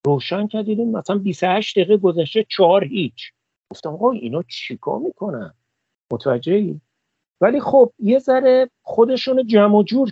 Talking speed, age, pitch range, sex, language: 130 wpm, 50-69, 155-205 Hz, male, Persian